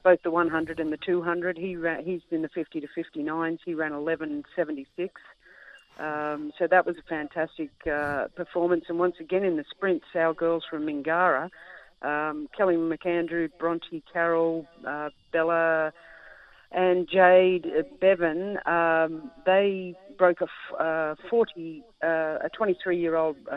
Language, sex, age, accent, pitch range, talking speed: English, female, 50-69, Australian, 155-180 Hz, 160 wpm